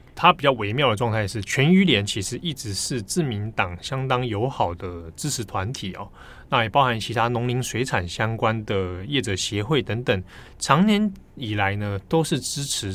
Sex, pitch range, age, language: male, 95-135 Hz, 20-39, Chinese